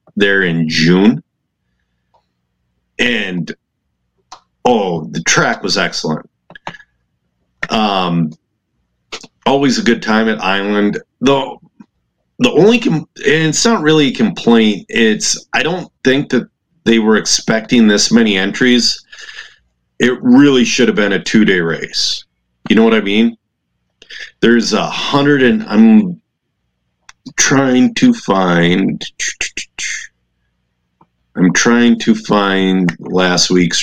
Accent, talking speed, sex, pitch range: American, 115 wpm, male, 90-125 Hz